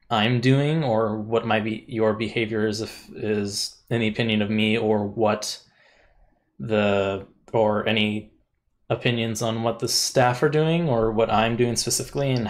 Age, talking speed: 20-39, 160 wpm